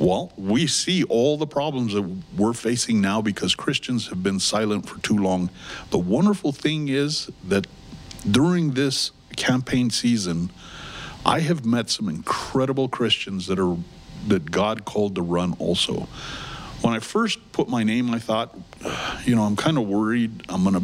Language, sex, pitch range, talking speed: English, male, 95-125 Hz, 165 wpm